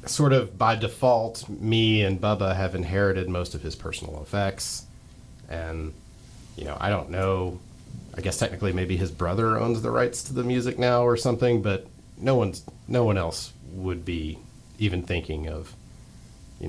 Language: English